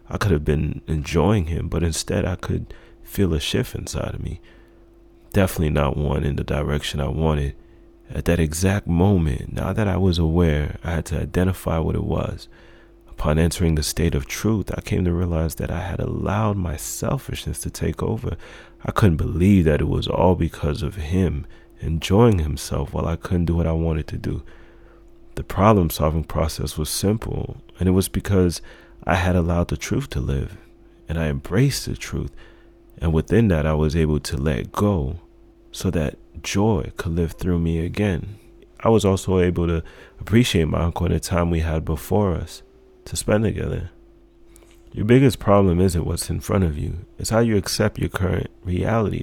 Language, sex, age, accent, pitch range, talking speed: English, male, 30-49, American, 80-100 Hz, 185 wpm